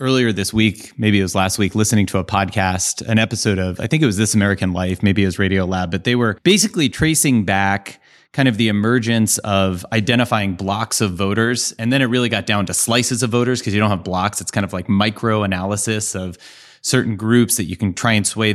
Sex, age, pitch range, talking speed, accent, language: male, 30-49, 105-125 Hz, 235 wpm, American, English